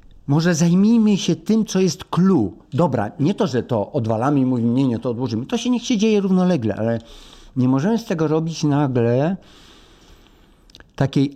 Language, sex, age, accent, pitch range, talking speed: Polish, male, 50-69, native, 120-165 Hz, 175 wpm